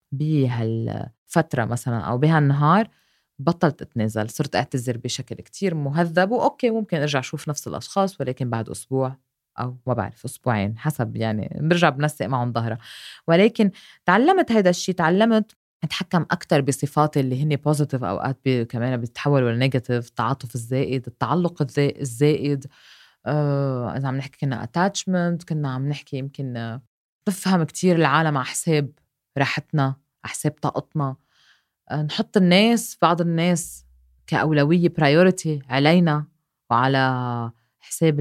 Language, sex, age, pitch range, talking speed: Arabic, female, 20-39, 130-175 Hz, 120 wpm